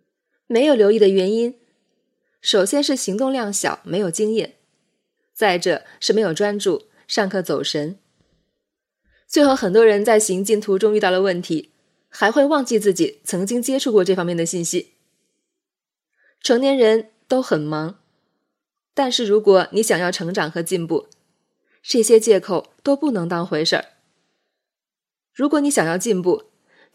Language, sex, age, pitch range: Chinese, female, 20-39, 185-245 Hz